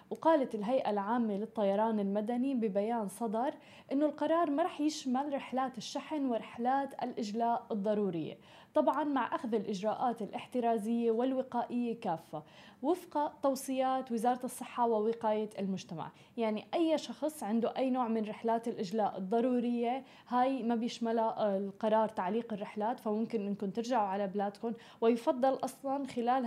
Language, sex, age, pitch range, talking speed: Arabic, female, 20-39, 220-260 Hz, 120 wpm